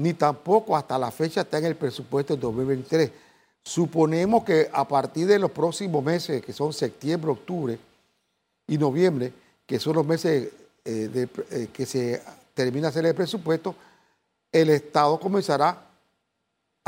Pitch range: 145-190 Hz